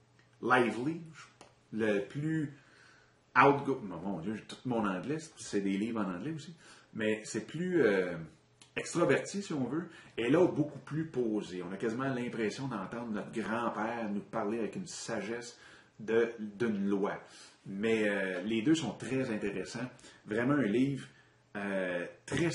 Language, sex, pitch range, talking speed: French, male, 110-150 Hz, 160 wpm